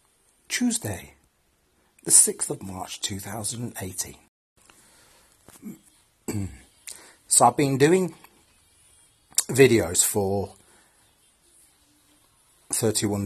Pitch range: 95-110 Hz